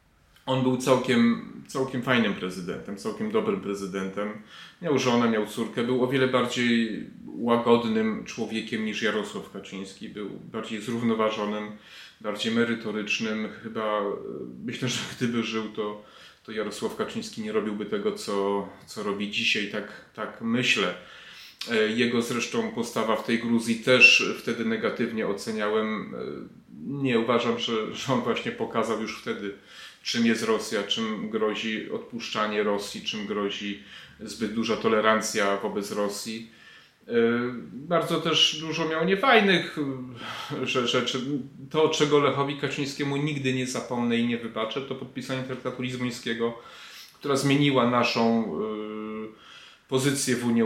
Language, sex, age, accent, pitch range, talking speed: Polish, male, 30-49, native, 110-140 Hz, 125 wpm